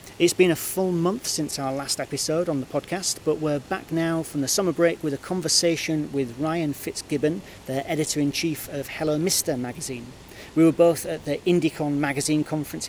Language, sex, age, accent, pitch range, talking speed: English, male, 40-59, British, 135-160 Hz, 185 wpm